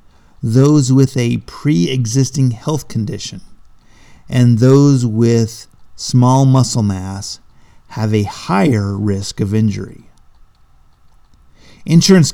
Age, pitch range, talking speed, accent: 50-69, 105-130 Hz, 90 wpm, American